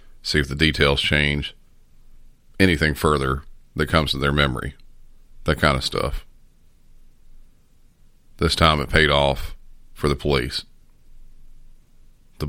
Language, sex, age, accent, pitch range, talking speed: English, male, 40-59, American, 70-80 Hz, 120 wpm